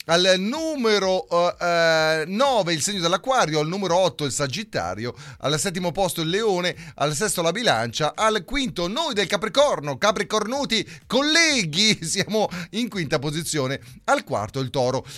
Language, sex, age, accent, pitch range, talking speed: Italian, male, 30-49, native, 155-230 Hz, 140 wpm